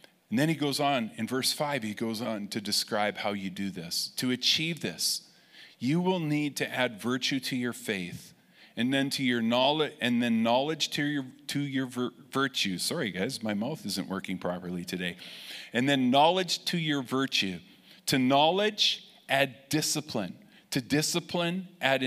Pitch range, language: 110-165 Hz, English